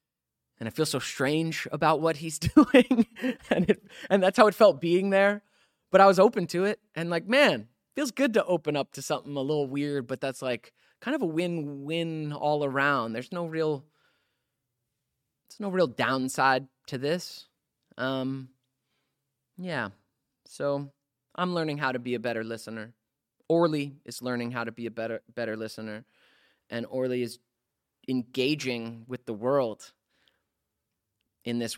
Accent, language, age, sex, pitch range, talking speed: American, English, 20-39, male, 115-155 Hz, 160 wpm